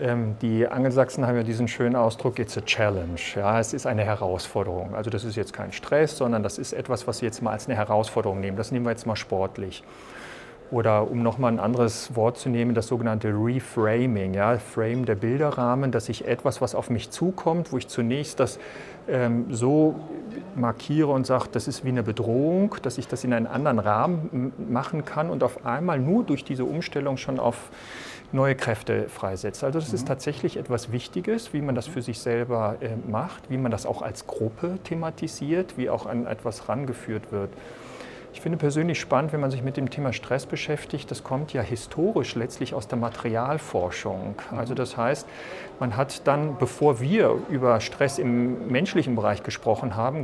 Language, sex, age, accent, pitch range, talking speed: German, male, 40-59, German, 115-140 Hz, 190 wpm